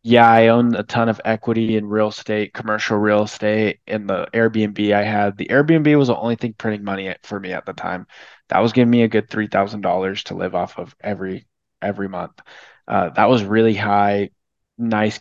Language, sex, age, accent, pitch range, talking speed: English, male, 20-39, American, 105-120 Hz, 200 wpm